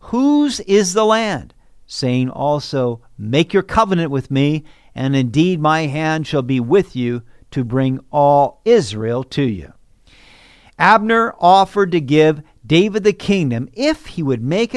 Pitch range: 120-175 Hz